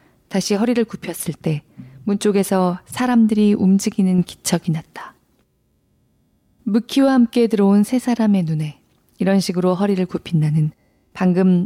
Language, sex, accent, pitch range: Korean, female, native, 170-220 Hz